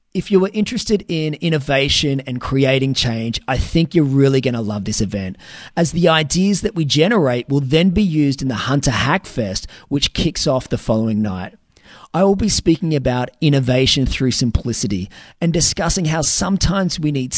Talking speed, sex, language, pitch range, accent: 180 wpm, male, English, 125-165 Hz, Australian